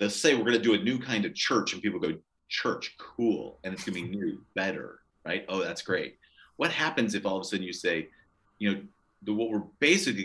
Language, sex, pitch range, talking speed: English, male, 80-105 Hz, 240 wpm